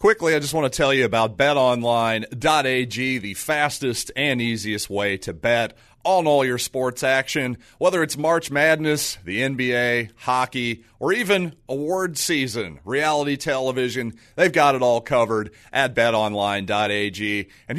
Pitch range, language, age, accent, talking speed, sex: 110-145 Hz, English, 40-59, American, 140 wpm, male